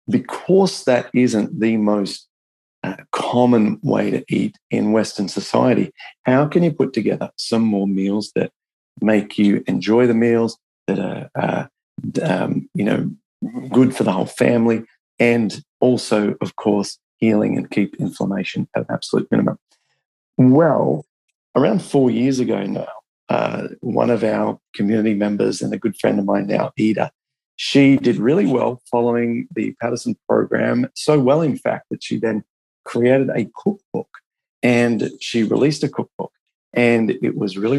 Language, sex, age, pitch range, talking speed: English, male, 40-59, 110-135 Hz, 155 wpm